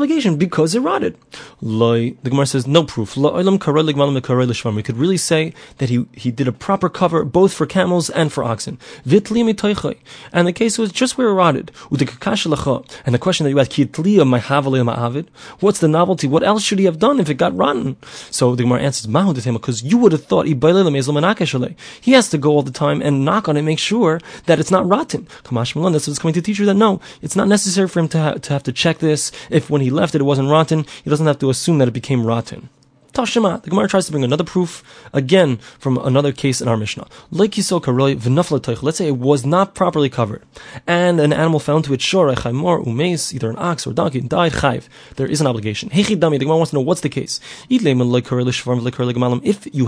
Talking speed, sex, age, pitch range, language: 195 wpm, male, 20-39, 130-180 Hz, English